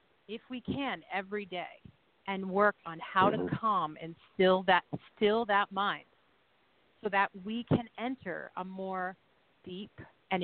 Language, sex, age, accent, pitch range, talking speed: English, female, 40-59, American, 170-200 Hz, 150 wpm